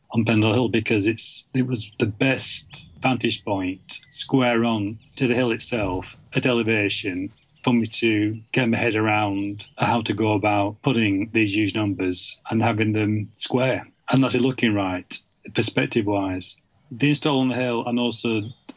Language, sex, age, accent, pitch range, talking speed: English, male, 30-49, British, 105-125 Hz, 165 wpm